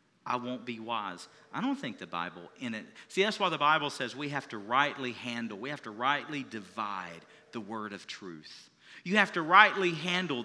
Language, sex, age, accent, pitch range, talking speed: English, male, 40-59, American, 145-195 Hz, 205 wpm